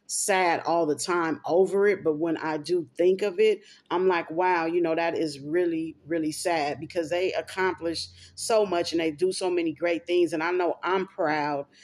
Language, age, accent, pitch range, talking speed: English, 40-59, American, 155-185 Hz, 205 wpm